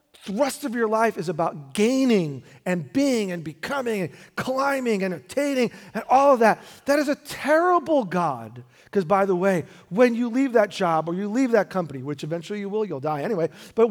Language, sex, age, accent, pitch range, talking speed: English, male, 40-59, American, 175-260 Hz, 205 wpm